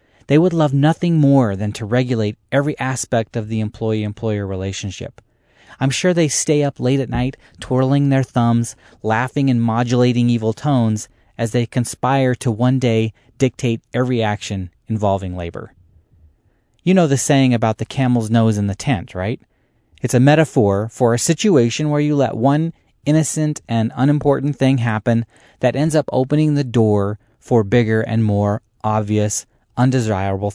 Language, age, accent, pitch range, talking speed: English, 30-49, American, 110-135 Hz, 155 wpm